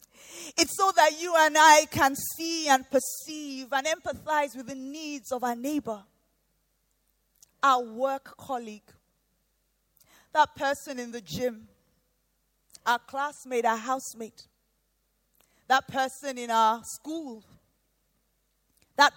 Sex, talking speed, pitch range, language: female, 115 wpm, 230-300 Hz, English